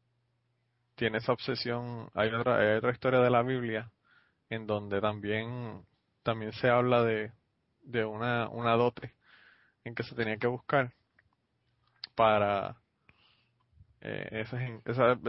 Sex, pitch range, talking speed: male, 115-130 Hz, 125 wpm